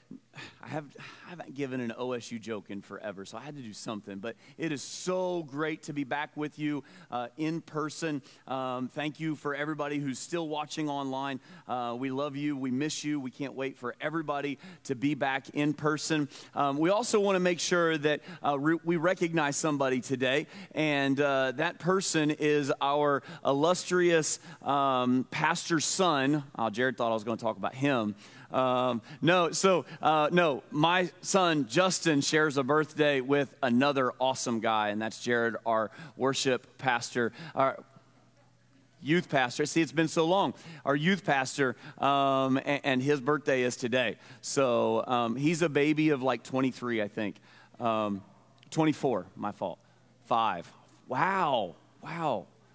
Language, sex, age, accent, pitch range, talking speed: English, male, 30-49, American, 130-155 Hz, 165 wpm